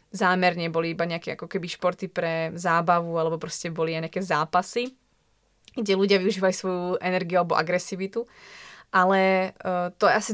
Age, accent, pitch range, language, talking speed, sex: 20-39, native, 175-195 Hz, Czech, 145 wpm, female